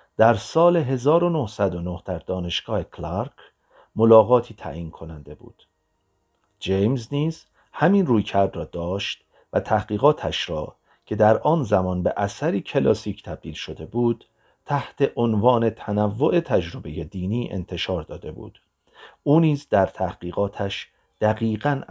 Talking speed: 120 wpm